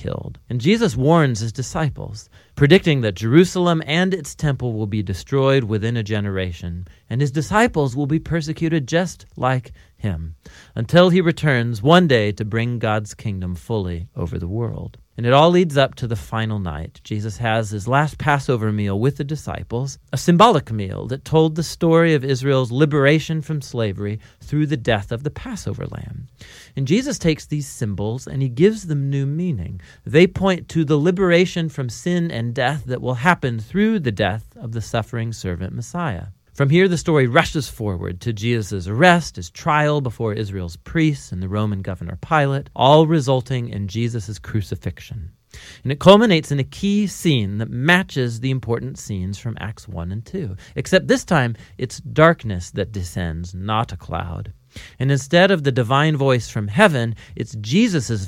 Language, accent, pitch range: English, American, 105-155 Hz